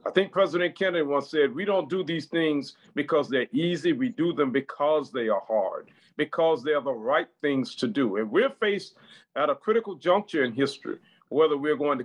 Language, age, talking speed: English, 50-69, 210 wpm